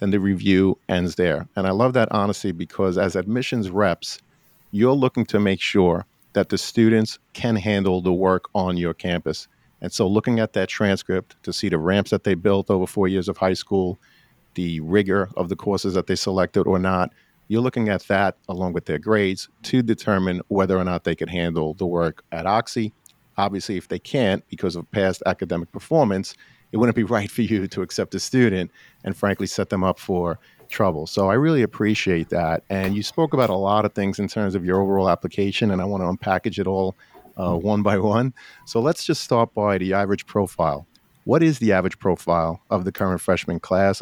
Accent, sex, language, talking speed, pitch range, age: American, male, English, 205 wpm, 90-105 Hz, 50-69